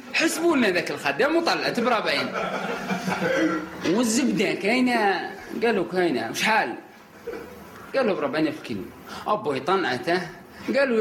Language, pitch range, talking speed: Arabic, 200-245 Hz, 100 wpm